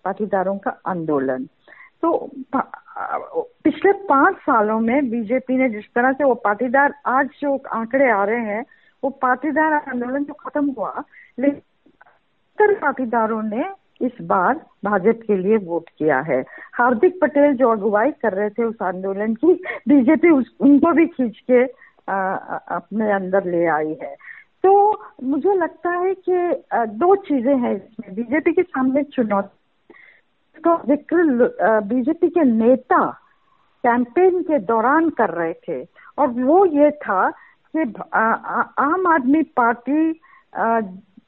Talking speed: 135 wpm